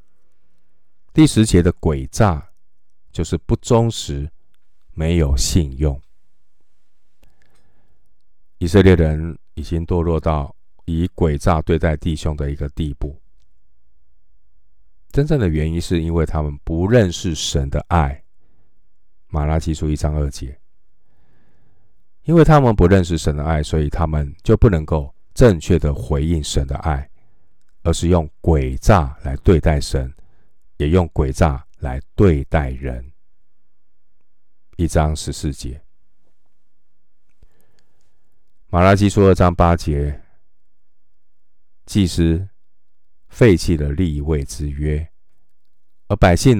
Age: 50-69